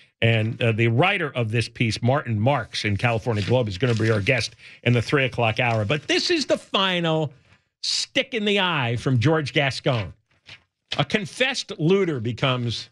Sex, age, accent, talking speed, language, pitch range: male, 50-69, American, 175 wpm, English, 110-170 Hz